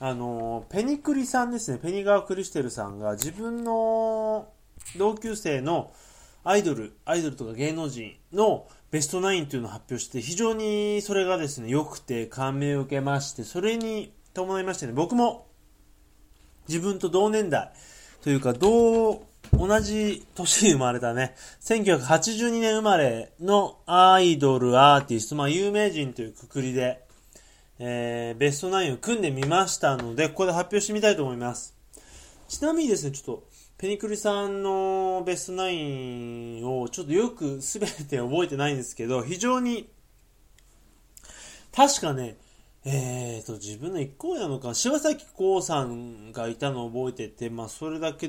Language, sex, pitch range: Japanese, male, 125-200 Hz